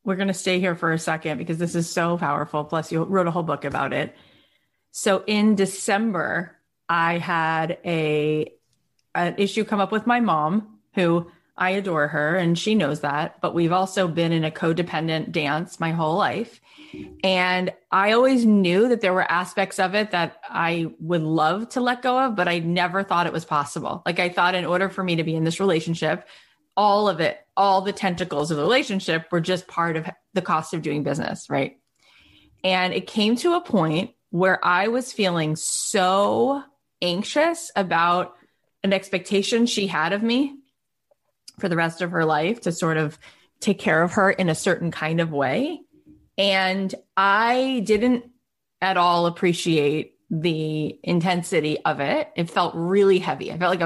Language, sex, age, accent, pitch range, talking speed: English, female, 30-49, American, 165-200 Hz, 185 wpm